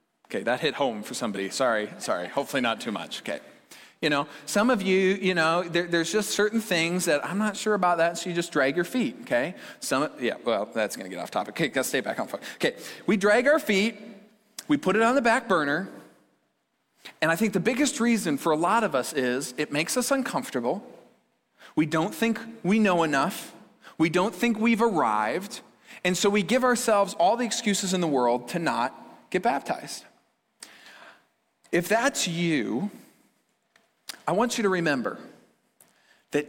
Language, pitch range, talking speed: English, 175-230 Hz, 190 wpm